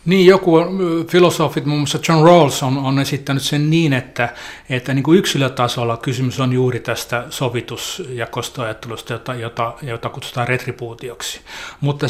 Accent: native